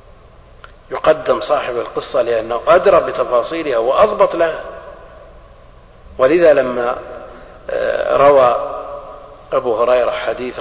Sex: male